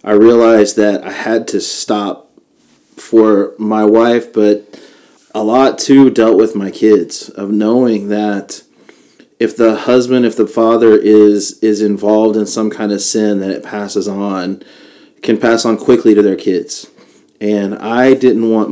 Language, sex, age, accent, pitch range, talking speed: English, male, 30-49, American, 105-115 Hz, 160 wpm